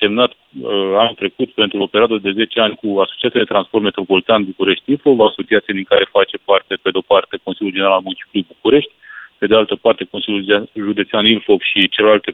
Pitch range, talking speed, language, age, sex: 100-150 Hz, 180 wpm, Romanian, 40-59, male